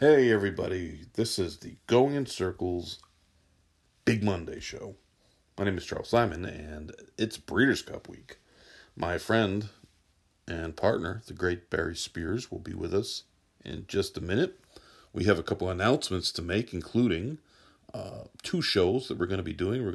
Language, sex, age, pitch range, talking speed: English, male, 40-59, 85-115 Hz, 170 wpm